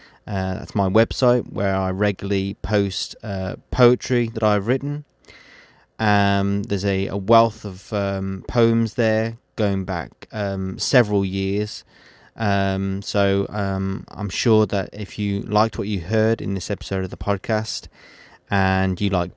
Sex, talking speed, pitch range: male, 150 wpm, 95-110 Hz